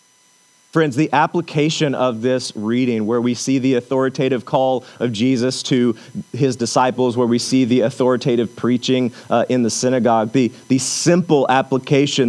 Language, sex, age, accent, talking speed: English, male, 40-59, American, 150 wpm